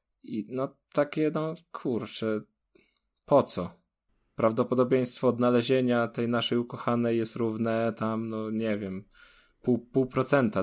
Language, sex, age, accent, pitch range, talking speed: Polish, male, 20-39, native, 105-125 Hz, 120 wpm